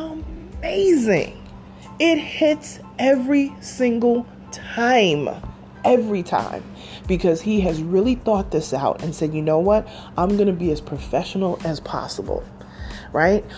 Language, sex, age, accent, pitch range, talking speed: English, female, 30-49, American, 165-225 Hz, 130 wpm